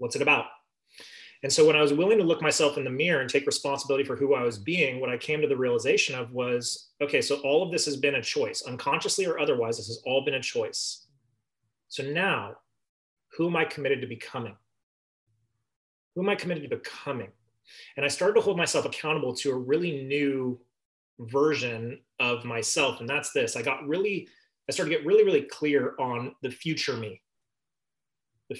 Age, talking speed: 30-49, 200 wpm